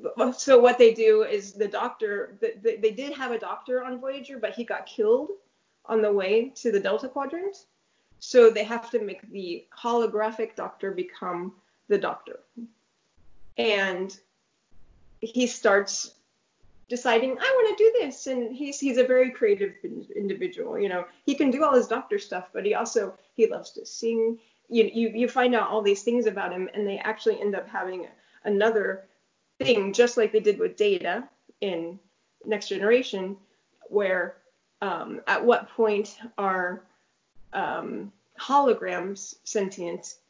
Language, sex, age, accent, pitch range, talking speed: English, female, 30-49, American, 200-275 Hz, 155 wpm